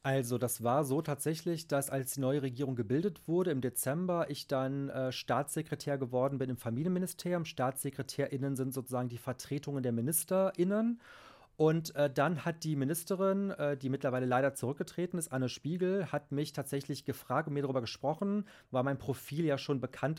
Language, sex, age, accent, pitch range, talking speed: German, male, 30-49, German, 130-155 Hz, 170 wpm